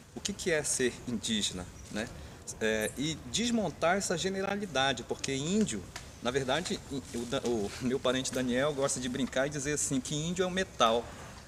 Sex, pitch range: male, 115-175 Hz